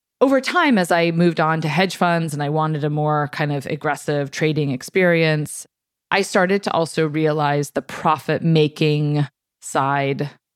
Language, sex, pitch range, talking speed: English, female, 145-165 Hz, 160 wpm